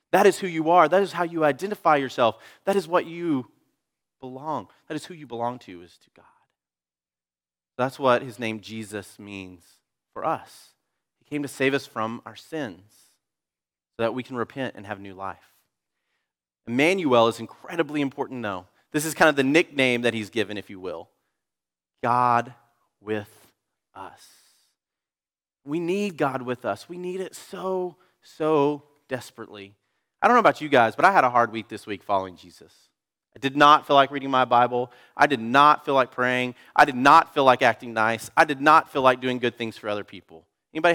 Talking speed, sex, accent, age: 190 wpm, male, American, 30-49